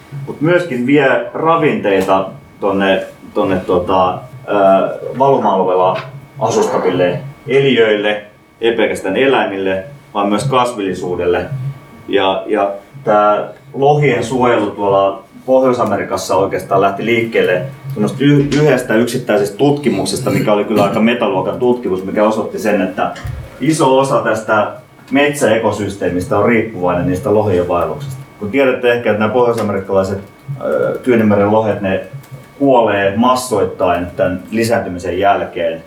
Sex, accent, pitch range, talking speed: male, native, 95-130 Hz, 105 wpm